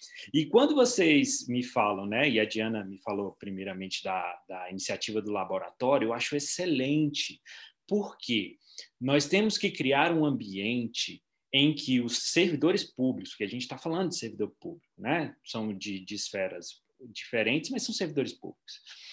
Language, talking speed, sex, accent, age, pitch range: Portuguese, 155 wpm, male, Brazilian, 20-39, 115-175 Hz